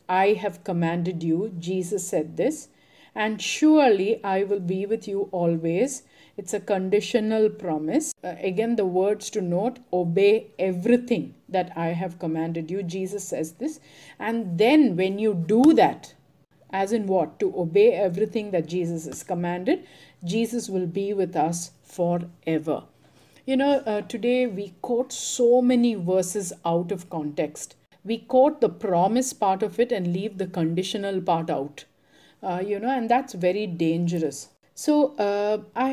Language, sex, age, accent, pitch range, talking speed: English, female, 50-69, Indian, 170-215 Hz, 155 wpm